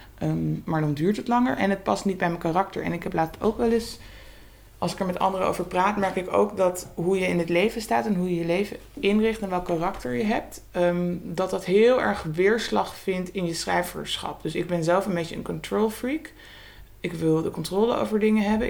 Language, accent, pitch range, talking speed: Dutch, Dutch, 160-195 Hz, 240 wpm